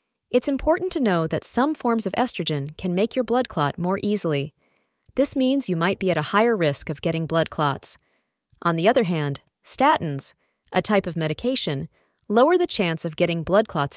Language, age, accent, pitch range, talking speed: English, 30-49, American, 160-240 Hz, 195 wpm